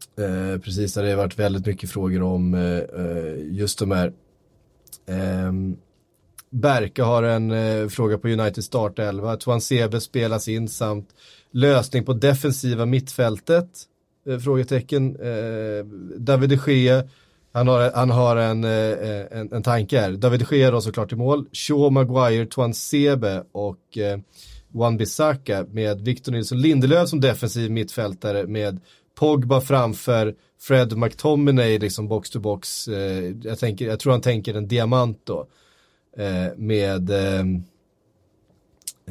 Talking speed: 135 wpm